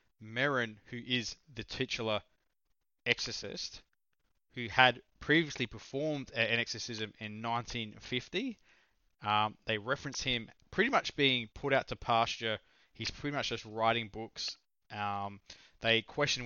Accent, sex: Australian, male